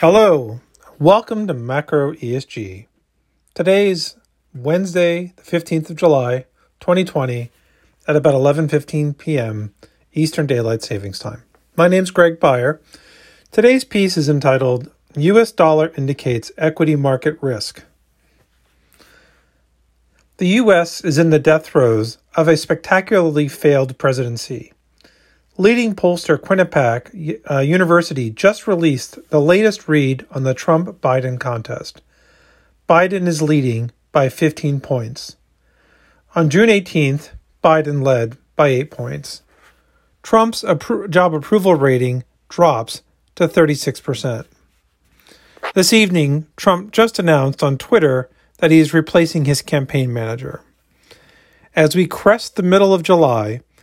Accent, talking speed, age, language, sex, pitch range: American, 115 wpm, 40-59, English, male, 130-175 Hz